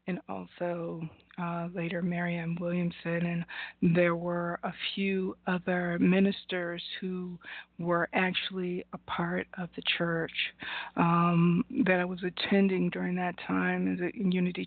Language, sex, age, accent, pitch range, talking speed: English, female, 40-59, American, 170-190 Hz, 130 wpm